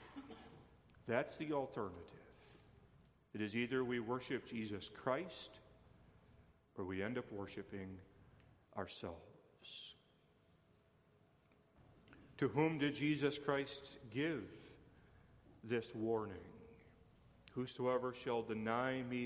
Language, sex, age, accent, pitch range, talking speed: English, male, 40-59, American, 120-155 Hz, 85 wpm